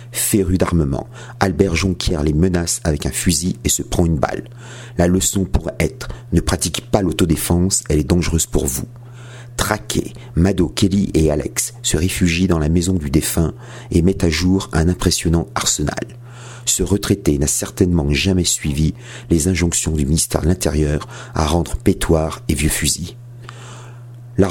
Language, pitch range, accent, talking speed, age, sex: French, 85-115 Hz, French, 165 wpm, 50-69, male